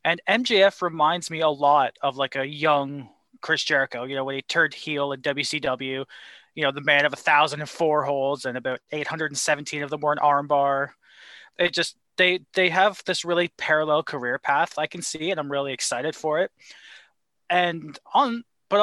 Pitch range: 140-170 Hz